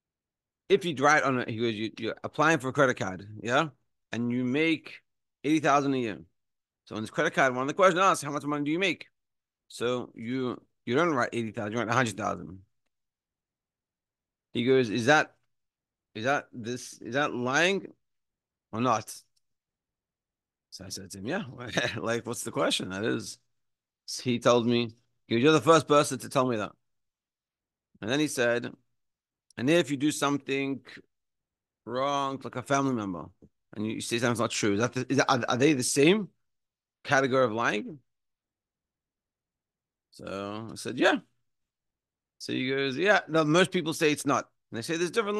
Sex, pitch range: male, 115-150 Hz